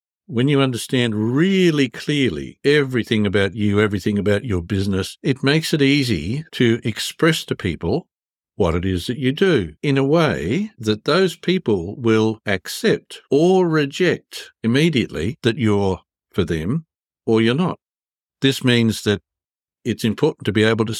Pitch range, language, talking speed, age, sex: 105-140 Hz, English, 150 wpm, 60-79, male